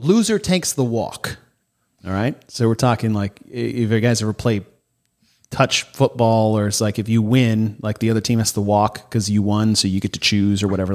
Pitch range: 115-155 Hz